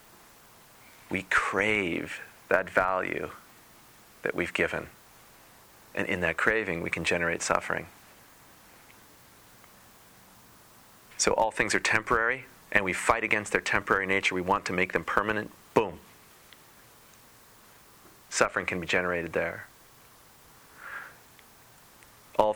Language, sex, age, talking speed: English, male, 30-49, 105 wpm